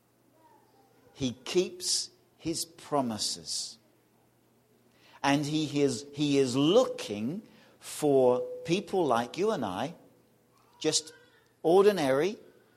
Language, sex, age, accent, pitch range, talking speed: English, male, 50-69, British, 125-170 Hz, 80 wpm